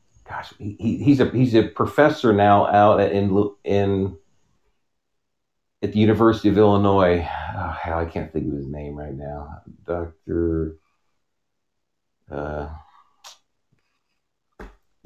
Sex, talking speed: male, 110 wpm